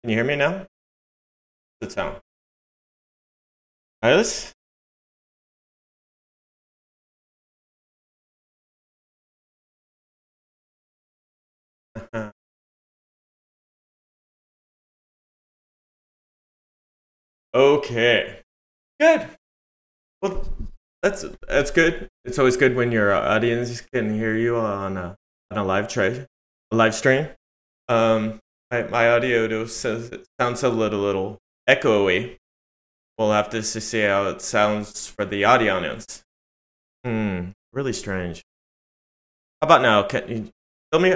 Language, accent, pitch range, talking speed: English, American, 105-130 Hz, 90 wpm